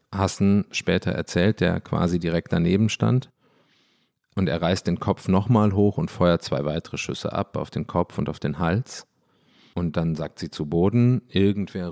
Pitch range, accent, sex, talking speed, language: 95-115 Hz, German, male, 175 wpm, German